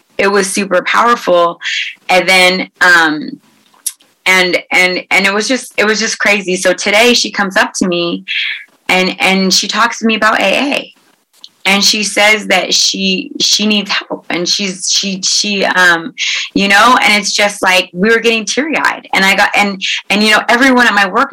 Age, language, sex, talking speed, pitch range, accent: 30-49, English, female, 190 wpm, 180-220 Hz, American